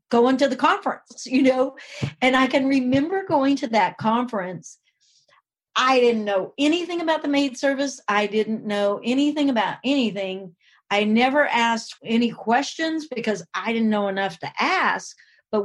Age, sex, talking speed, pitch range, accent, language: 40-59, female, 155 wpm, 205-260 Hz, American, English